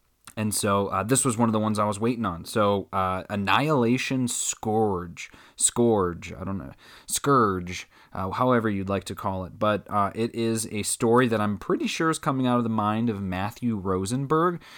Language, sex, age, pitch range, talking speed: English, male, 30-49, 95-115 Hz, 195 wpm